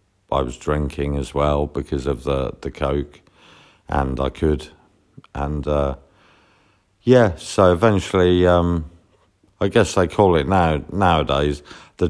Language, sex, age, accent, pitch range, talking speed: English, male, 50-69, British, 75-90 Hz, 135 wpm